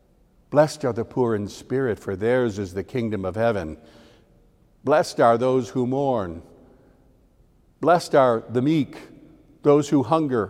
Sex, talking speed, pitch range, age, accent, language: male, 145 wpm, 125-175 Hz, 60-79, American, English